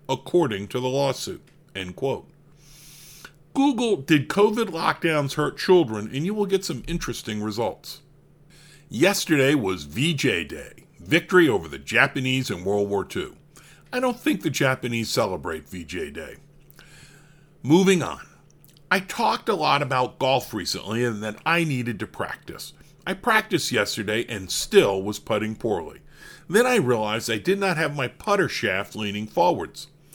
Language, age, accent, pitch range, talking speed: English, 50-69, American, 120-170 Hz, 145 wpm